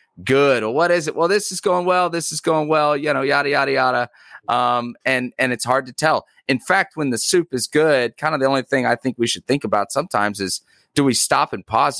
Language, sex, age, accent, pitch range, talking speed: English, male, 30-49, American, 90-125 Hz, 255 wpm